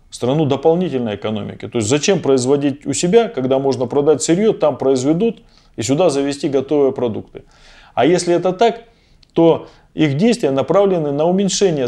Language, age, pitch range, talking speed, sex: Russian, 20-39, 125-185 Hz, 150 wpm, male